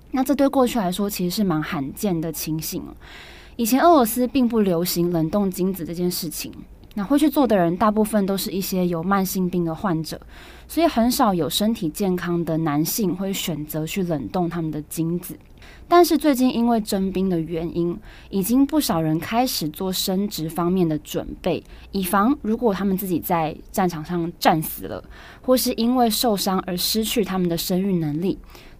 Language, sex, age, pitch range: Chinese, female, 20-39, 170-230 Hz